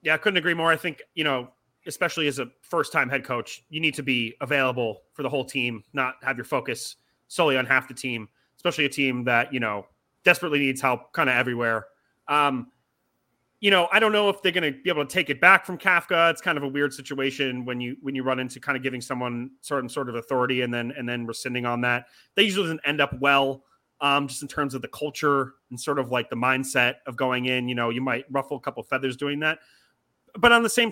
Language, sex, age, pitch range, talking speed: English, male, 30-49, 130-155 Hz, 245 wpm